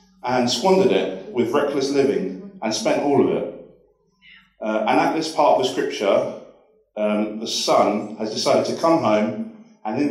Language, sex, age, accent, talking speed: English, male, 30-49, British, 170 wpm